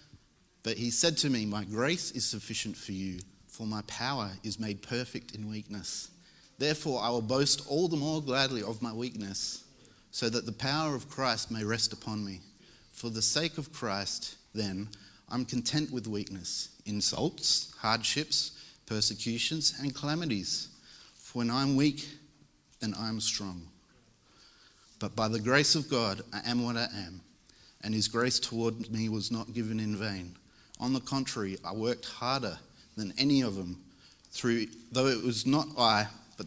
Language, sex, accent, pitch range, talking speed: English, male, Australian, 105-130 Hz, 165 wpm